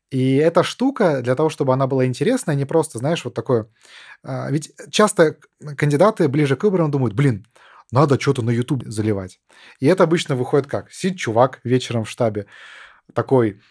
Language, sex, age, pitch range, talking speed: Russian, male, 20-39, 120-150 Hz, 165 wpm